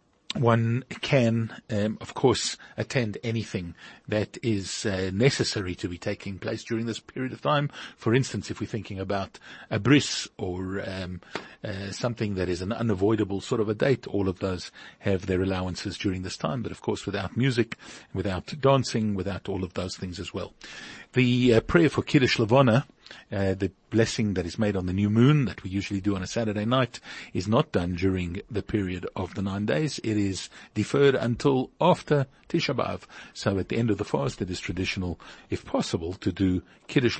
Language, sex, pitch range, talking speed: English, male, 95-115 Hz, 190 wpm